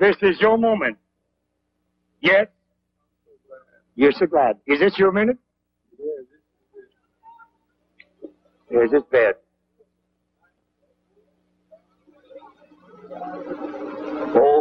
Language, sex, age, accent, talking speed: English, male, 60-79, American, 65 wpm